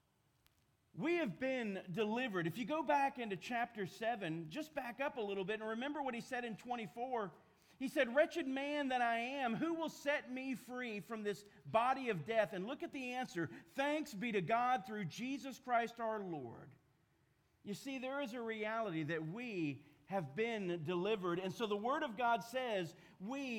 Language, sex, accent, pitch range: English, male, American, 180-255 Hz